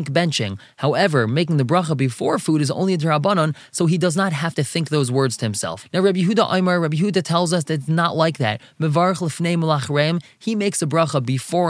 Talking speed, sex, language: 205 wpm, male, English